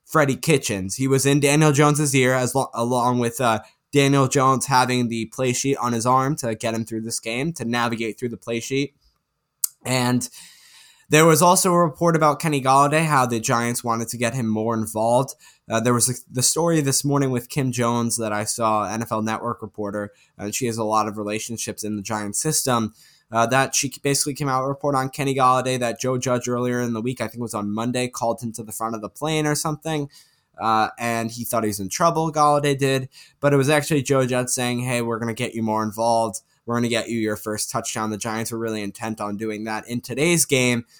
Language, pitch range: English, 115-140 Hz